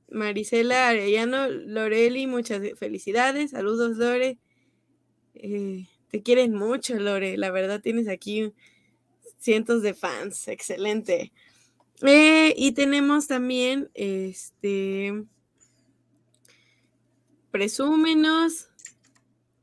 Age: 20-39